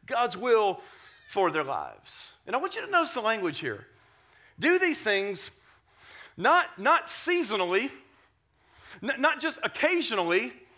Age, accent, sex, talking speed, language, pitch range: 40-59, American, male, 130 wpm, English, 175-270 Hz